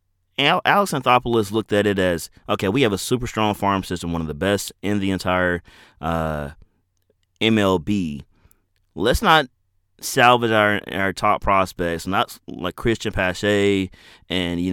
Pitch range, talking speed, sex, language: 90-115 Hz, 145 wpm, male, English